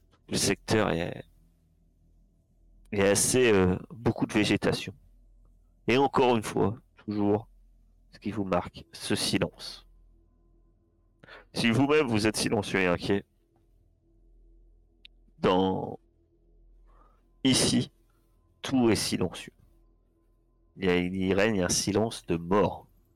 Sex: male